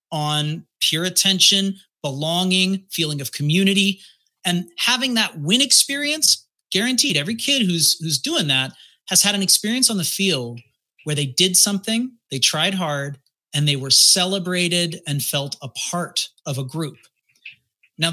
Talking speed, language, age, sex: 150 wpm, English, 30-49, male